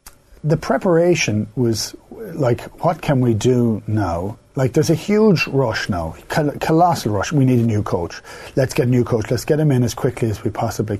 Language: English